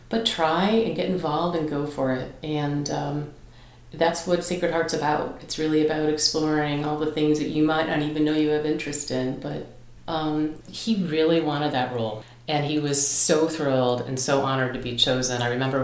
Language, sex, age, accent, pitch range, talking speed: English, female, 40-59, American, 135-175 Hz, 200 wpm